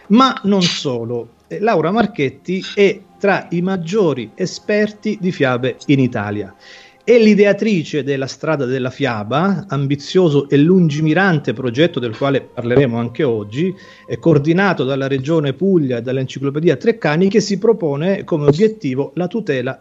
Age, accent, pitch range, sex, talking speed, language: 40-59, native, 130-180 Hz, male, 135 wpm, Italian